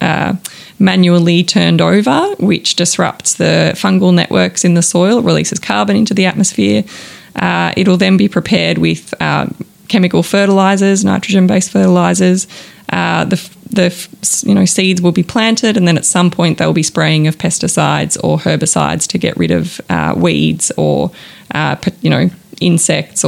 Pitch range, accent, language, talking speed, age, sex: 160-195 Hz, Australian, English, 155 wpm, 20-39, female